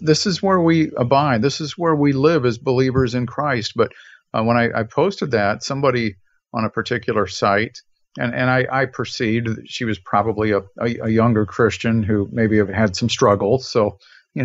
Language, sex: English, male